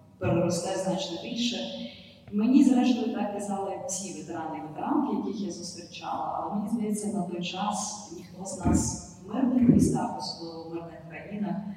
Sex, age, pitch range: female, 20-39, 155-195 Hz